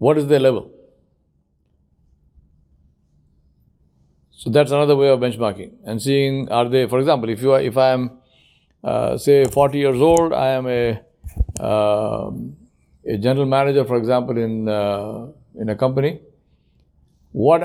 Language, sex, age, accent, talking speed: English, male, 60-79, Indian, 145 wpm